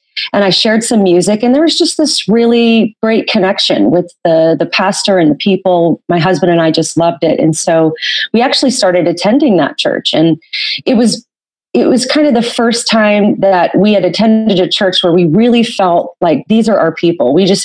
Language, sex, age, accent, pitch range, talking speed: English, female, 30-49, American, 175-220 Hz, 210 wpm